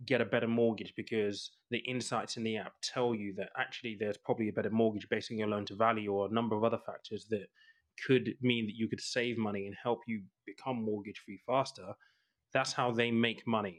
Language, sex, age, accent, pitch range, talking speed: English, male, 20-39, British, 105-130 Hz, 220 wpm